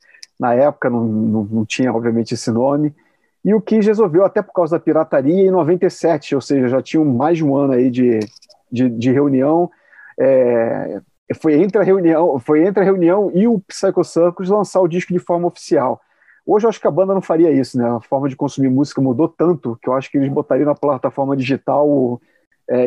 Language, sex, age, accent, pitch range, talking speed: Portuguese, male, 40-59, Brazilian, 130-170 Hz, 205 wpm